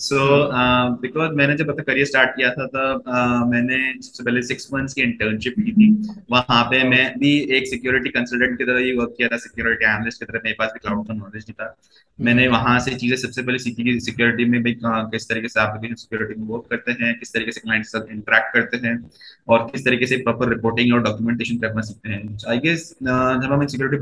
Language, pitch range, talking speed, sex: Hindi, 115-130 Hz, 75 wpm, male